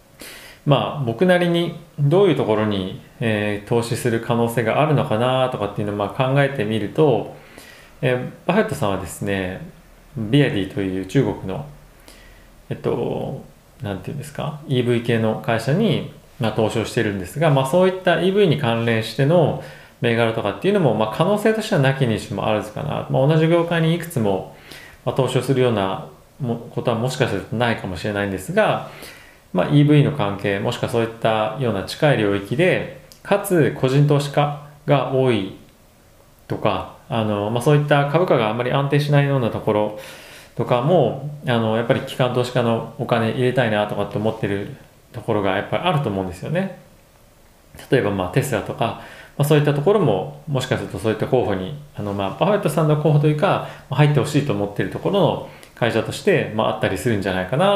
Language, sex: Japanese, male